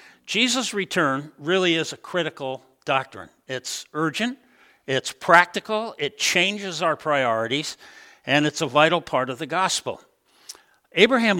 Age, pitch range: 60-79, 150-250 Hz